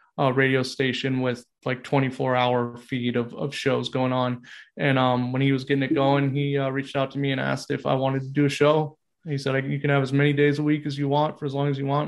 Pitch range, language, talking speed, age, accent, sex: 125-140 Hz, English, 285 wpm, 20-39, American, male